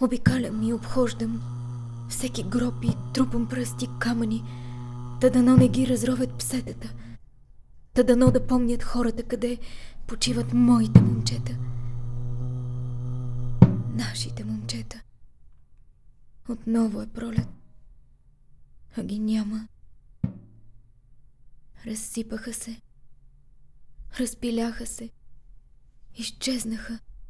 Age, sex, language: 20-39, female, Bulgarian